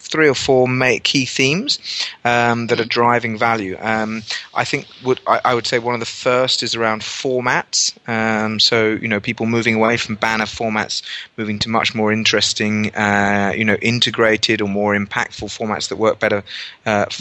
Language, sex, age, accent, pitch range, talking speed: English, male, 30-49, British, 105-115 Hz, 180 wpm